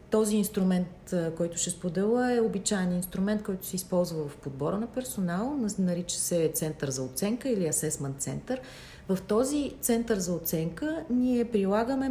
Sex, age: female, 40-59